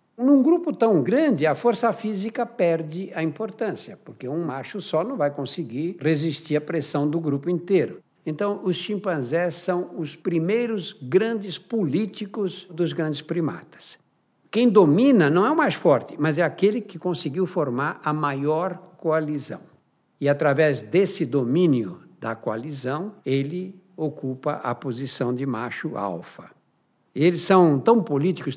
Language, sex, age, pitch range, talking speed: Portuguese, male, 60-79, 145-205 Hz, 140 wpm